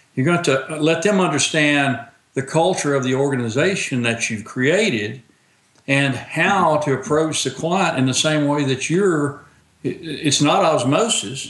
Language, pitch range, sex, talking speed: English, 115-145 Hz, male, 160 wpm